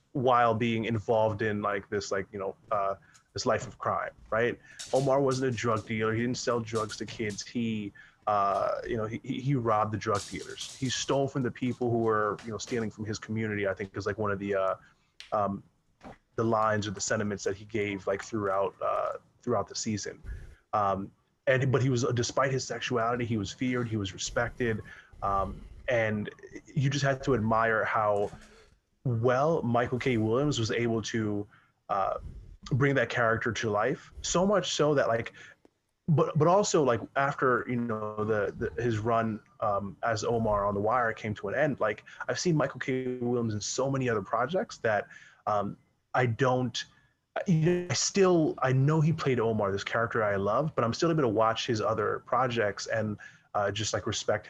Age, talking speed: 20-39, 195 wpm